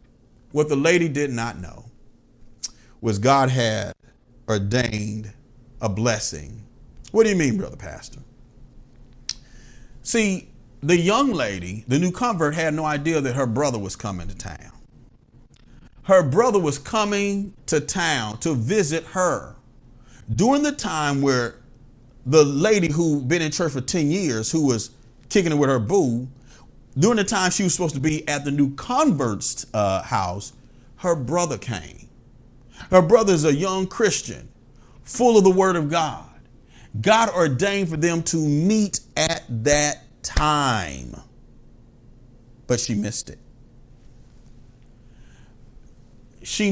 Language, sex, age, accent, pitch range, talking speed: English, male, 40-59, American, 120-165 Hz, 140 wpm